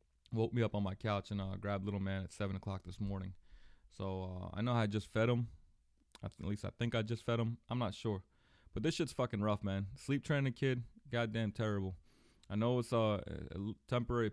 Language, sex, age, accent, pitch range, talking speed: English, male, 20-39, American, 95-115 Hz, 220 wpm